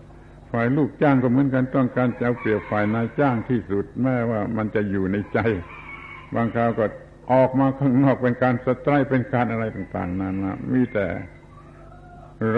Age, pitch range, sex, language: 70-89, 95-125 Hz, male, Thai